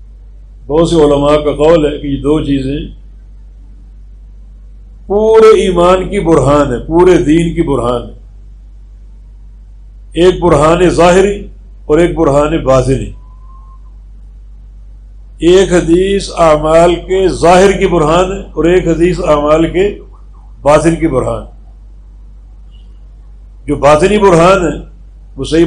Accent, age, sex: Indian, 50-69, male